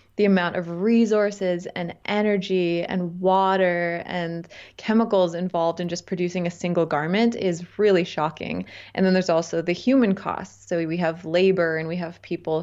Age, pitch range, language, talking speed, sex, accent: 20-39, 165-190 Hz, English, 165 wpm, female, American